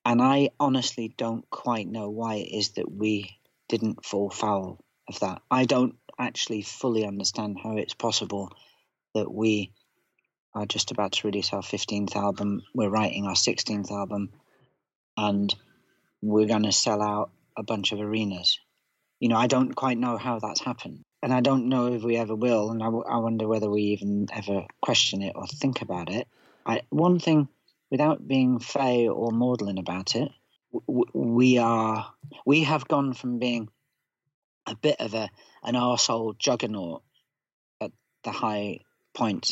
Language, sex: English, male